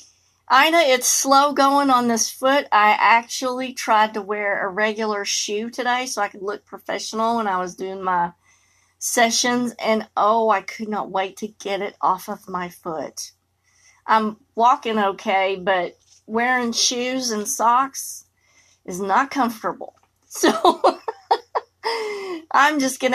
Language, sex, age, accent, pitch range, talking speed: English, female, 40-59, American, 205-260 Hz, 145 wpm